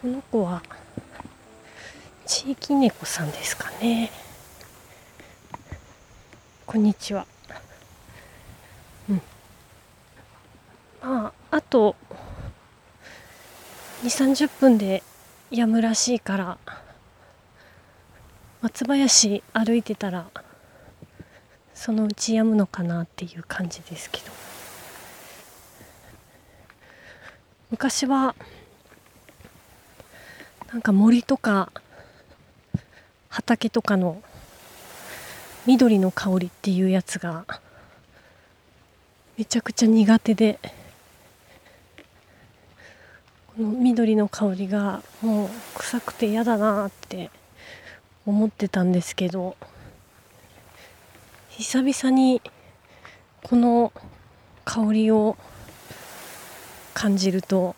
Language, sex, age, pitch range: Japanese, female, 30-49, 165-230 Hz